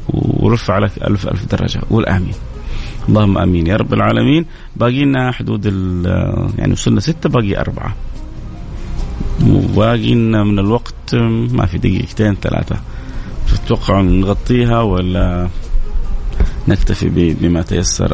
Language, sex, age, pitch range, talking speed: Arabic, male, 30-49, 95-120 Hz, 105 wpm